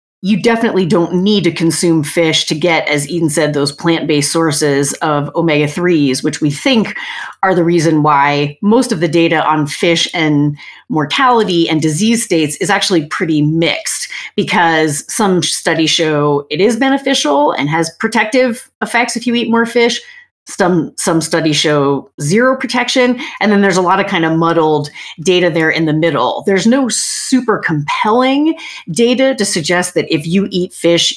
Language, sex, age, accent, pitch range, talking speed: English, female, 30-49, American, 155-215 Hz, 165 wpm